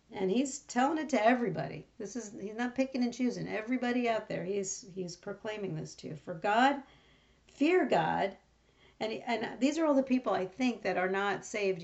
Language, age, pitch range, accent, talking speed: English, 50-69, 190-240 Hz, American, 200 wpm